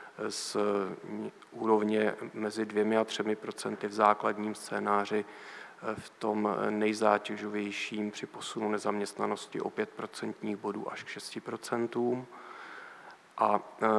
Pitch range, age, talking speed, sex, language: 105-110 Hz, 40-59, 95 wpm, male, Czech